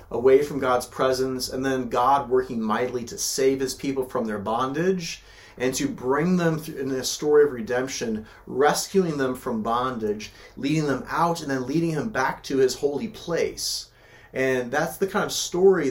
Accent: American